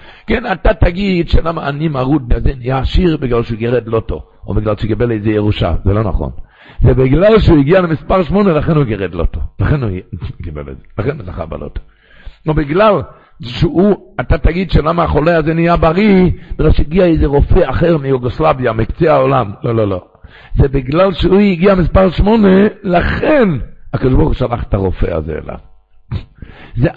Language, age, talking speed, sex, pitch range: Hebrew, 60-79, 160 wpm, male, 110-165 Hz